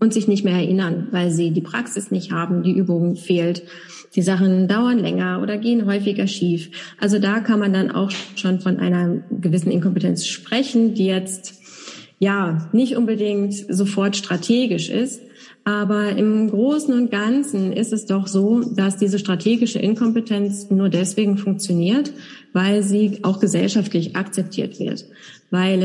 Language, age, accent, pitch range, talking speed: German, 20-39, German, 180-215 Hz, 150 wpm